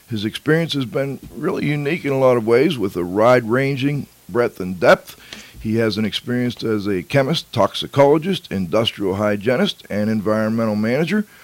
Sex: male